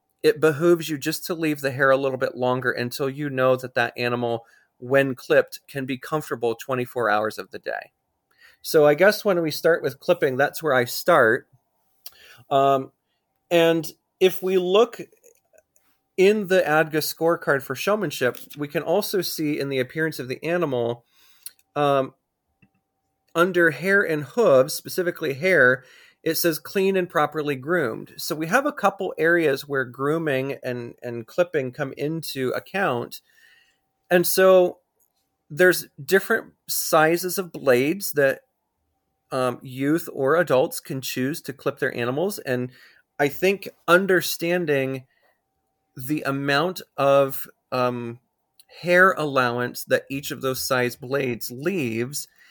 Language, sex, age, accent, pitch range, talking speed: English, male, 30-49, American, 130-175 Hz, 140 wpm